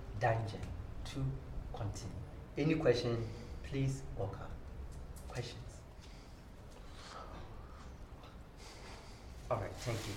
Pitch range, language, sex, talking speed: 105-150 Hz, English, male, 75 wpm